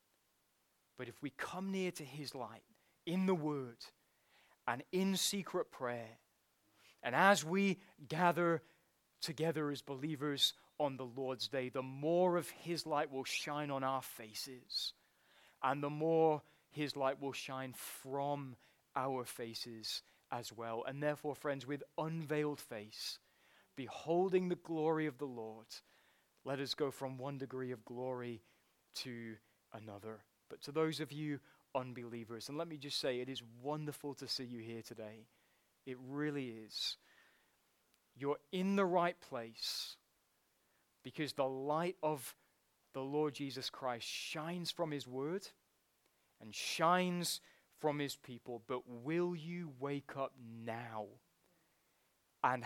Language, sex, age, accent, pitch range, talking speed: English, male, 20-39, British, 120-160 Hz, 140 wpm